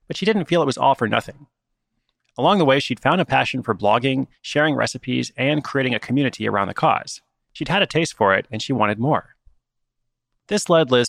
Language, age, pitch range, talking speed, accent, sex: English, 30-49, 115-150 Hz, 215 wpm, American, male